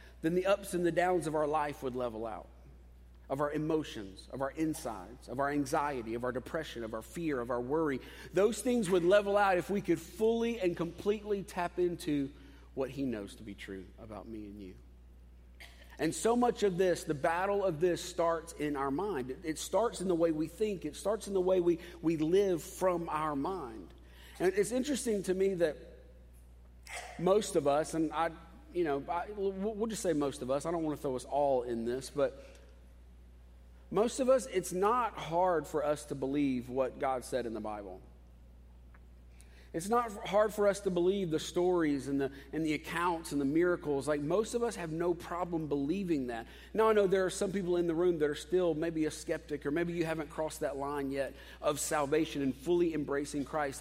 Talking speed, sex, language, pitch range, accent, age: 205 wpm, male, English, 130-185 Hz, American, 40-59